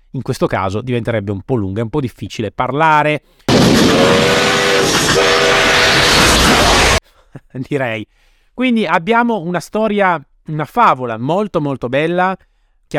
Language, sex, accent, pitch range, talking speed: Italian, male, native, 120-160 Hz, 100 wpm